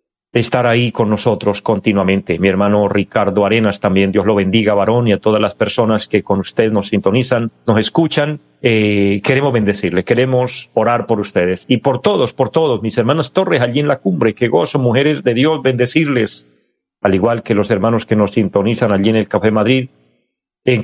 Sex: male